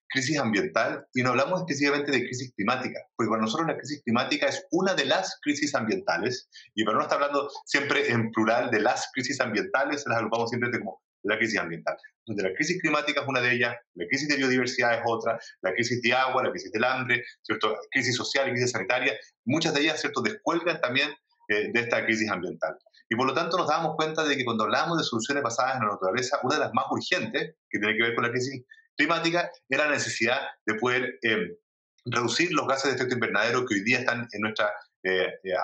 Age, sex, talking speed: 30-49, male, 215 wpm